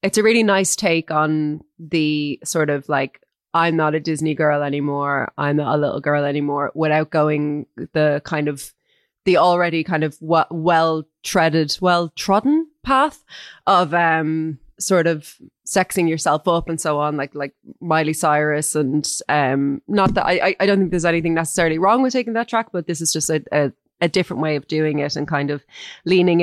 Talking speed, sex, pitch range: 180 wpm, female, 150-170 Hz